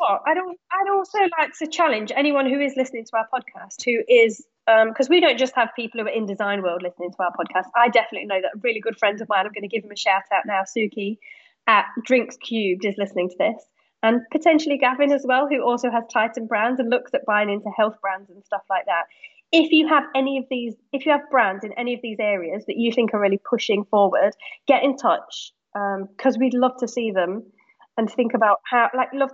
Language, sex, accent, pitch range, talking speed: English, female, British, 205-260 Hz, 235 wpm